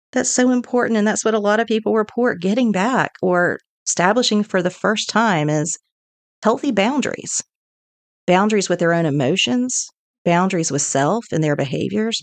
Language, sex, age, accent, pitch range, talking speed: English, female, 40-59, American, 160-200 Hz, 160 wpm